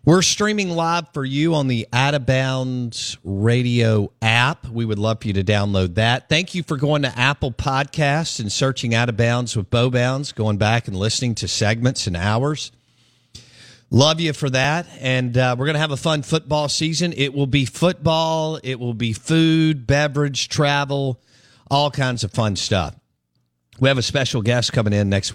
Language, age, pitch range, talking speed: English, 50-69, 100-135 Hz, 190 wpm